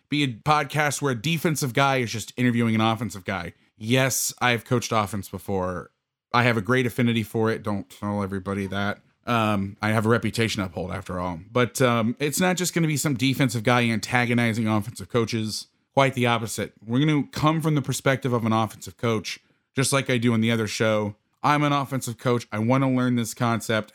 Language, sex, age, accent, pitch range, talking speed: English, male, 30-49, American, 105-130 Hz, 210 wpm